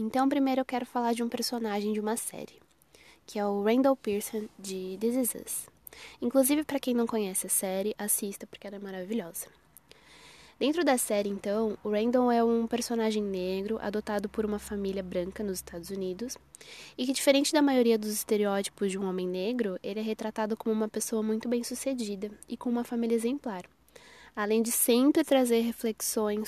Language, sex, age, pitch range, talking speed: Portuguese, female, 10-29, 210-250 Hz, 175 wpm